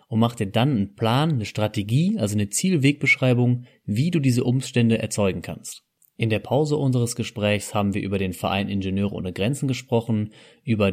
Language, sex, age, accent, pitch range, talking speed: German, male, 30-49, German, 100-125 Hz, 175 wpm